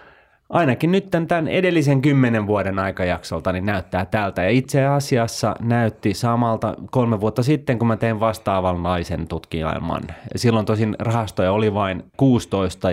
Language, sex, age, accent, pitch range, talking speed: Finnish, male, 30-49, native, 90-115 Hz, 140 wpm